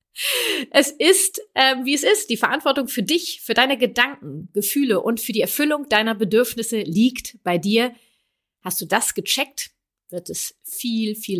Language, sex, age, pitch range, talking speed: German, female, 30-49, 215-280 Hz, 165 wpm